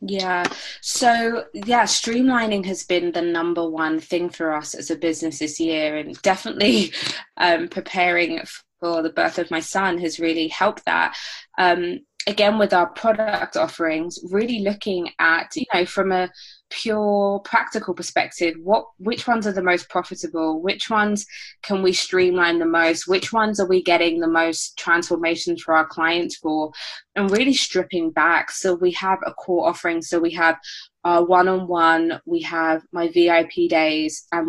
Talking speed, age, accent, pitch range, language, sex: 165 wpm, 20-39, British, 165-205 Hz, English, female